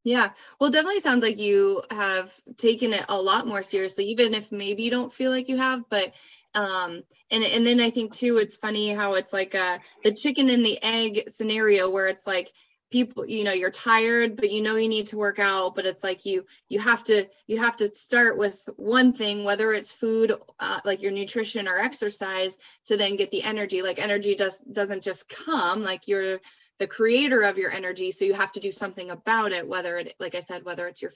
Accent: American